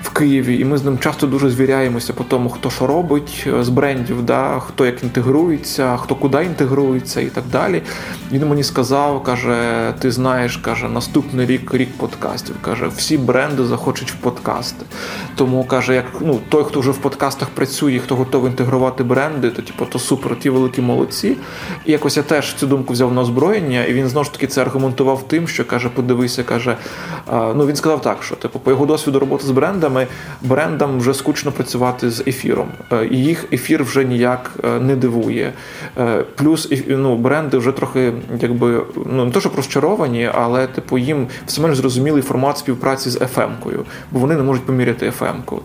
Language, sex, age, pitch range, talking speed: Ukrainian, male, 20-39, 125-145 Hz, 180 wpm